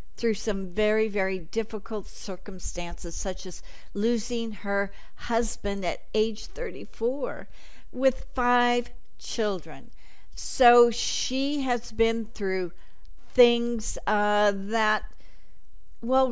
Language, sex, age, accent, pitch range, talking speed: English, female, 50-69, American, 205-245 Hz, 95 wpm